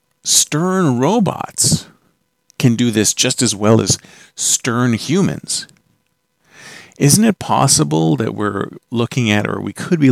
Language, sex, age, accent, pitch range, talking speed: English, male, 50-69, American, 115-170 Hz, 130 wpm